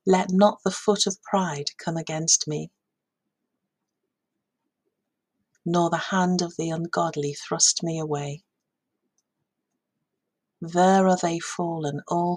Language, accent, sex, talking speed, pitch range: English, British, female, 110 wpm, 155-190 Hz